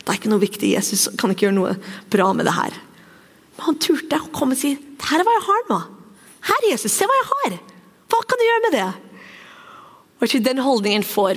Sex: female